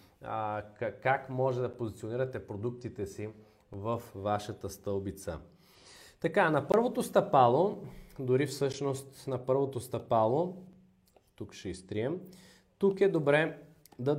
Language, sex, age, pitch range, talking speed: Bulgarian, male, 30-49, 115-150 Hz, 105 wpm